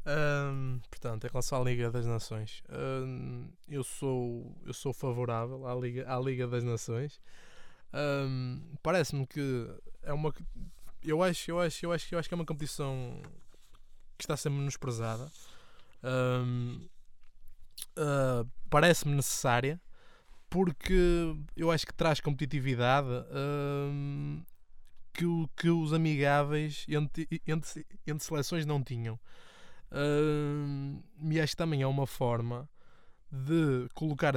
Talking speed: 125 wpm